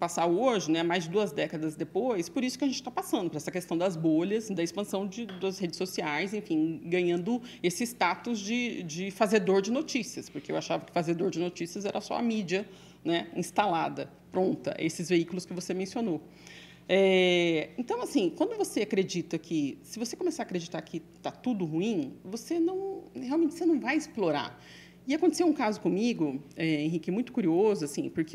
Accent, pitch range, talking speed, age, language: Brazilian, 165-220 Hz, 180 wpm, 40-59, Portuguese